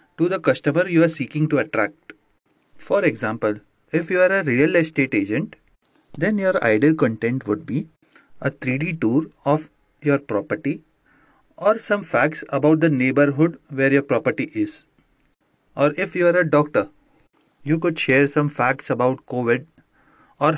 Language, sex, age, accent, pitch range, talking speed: Hindi, male, 30-49, native, 135-180 Hz, 155 wpm